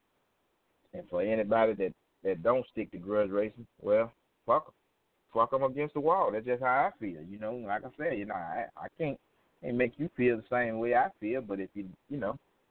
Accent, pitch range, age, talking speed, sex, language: American, 100-130 Hz, 30-49, 225 wpm, male, English